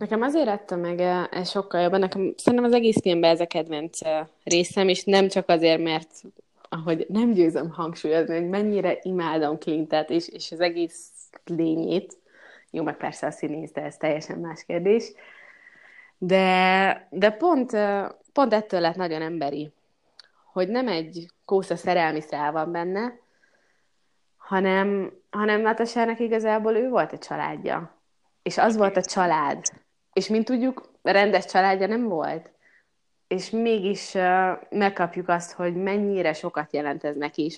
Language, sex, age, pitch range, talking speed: Hungarian, female, 20-39, 165-200 Hz, 140 wpm